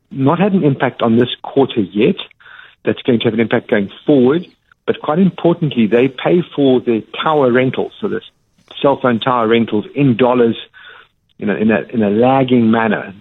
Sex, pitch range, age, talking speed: male, 105-140 Hz, 60-79, 185 wpm